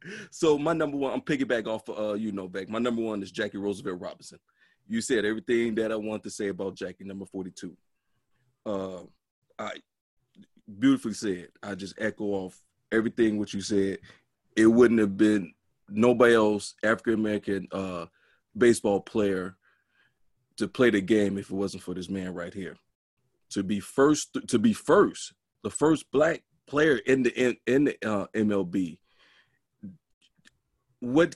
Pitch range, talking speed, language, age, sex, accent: 100-135 Hz, 160 wpm, English, 30-49, male, American